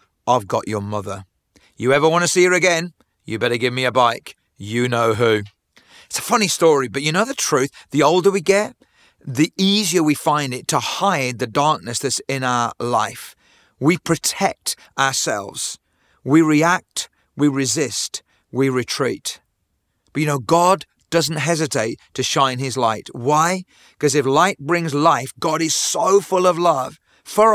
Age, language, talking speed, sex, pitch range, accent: 40-59, English, 170 wpm, male, 135-170 Hz, British